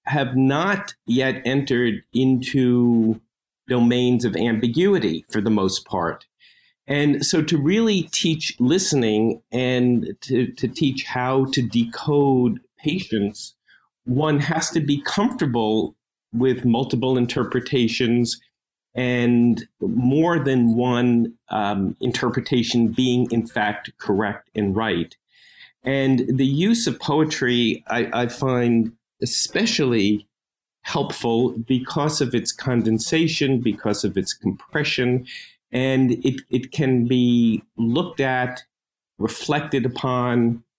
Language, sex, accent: English, male, American